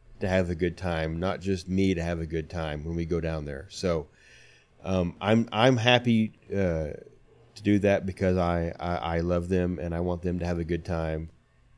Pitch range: 85-100 Hz